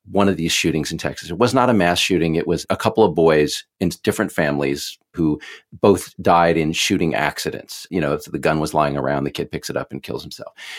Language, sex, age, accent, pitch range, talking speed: English, male, 40-59, American, 80-105 Hz, 245 wpm